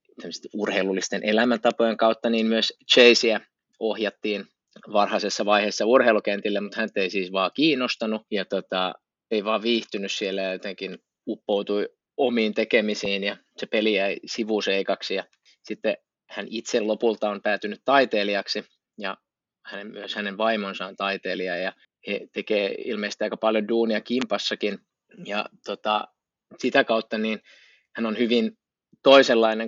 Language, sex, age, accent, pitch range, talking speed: Finnish, male, 20-39, native, 100-115 Hz, 130 wpm